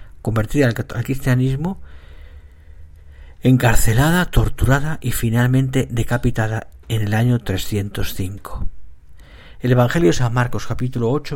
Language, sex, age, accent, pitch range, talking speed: Spanish, male, 50-69, Spanish, 95-130 Hz, 100 wpm